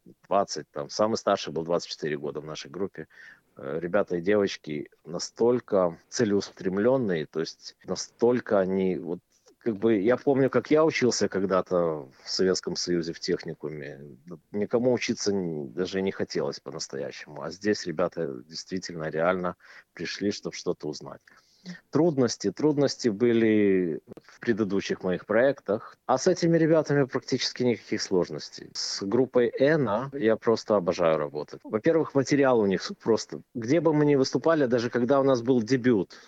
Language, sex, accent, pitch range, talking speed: Russian, male, native, 100-135 Hz, 140 wpm